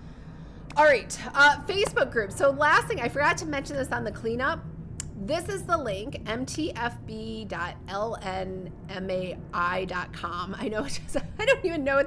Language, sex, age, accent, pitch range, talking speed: English, female, 30-49, American, 195-315 Hz, 140 wpm